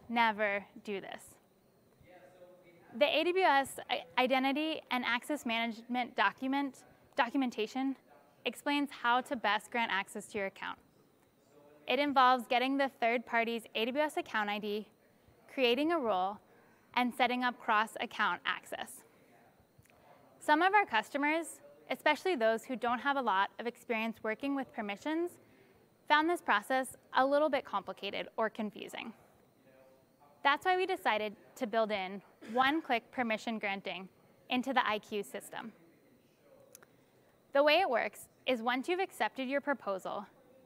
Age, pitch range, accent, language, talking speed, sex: 10-29, 215-280 Hz, American, English, 125 wpm, female